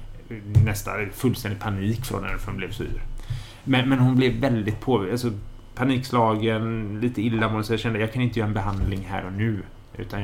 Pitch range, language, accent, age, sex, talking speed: 105-120 Hz, Swedish, Norwegian, 30-49, male, 170 wpm